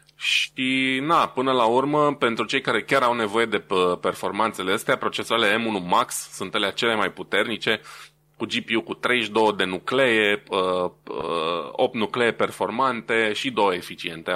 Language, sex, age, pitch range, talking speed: Romanian, male, 20-39, 90-120 Hz, 140 wpm